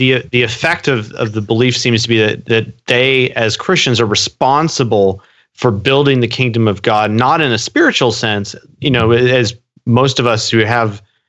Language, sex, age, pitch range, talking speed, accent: English, male, 30-49, 110-130 Hz, 190 wpm, American